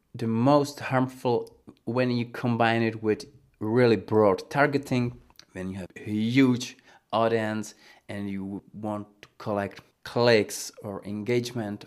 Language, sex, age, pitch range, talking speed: English, male, 30-49, 105-135 Hz, 125 wpm